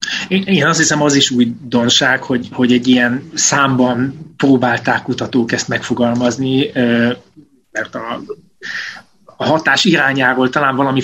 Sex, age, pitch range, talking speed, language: male, 30-49, 125-155 Hz, 120 wpm, Hungarian